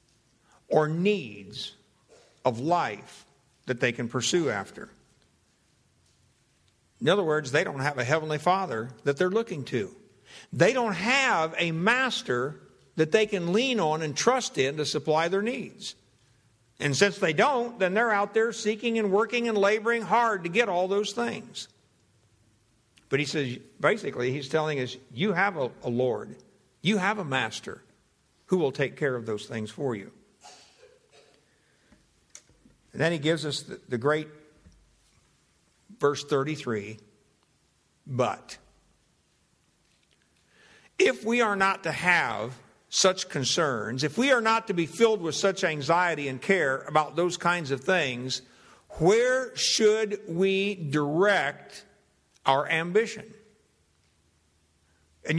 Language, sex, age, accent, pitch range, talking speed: English, male, 60-79, American, 130-205 Hz, 135 wpm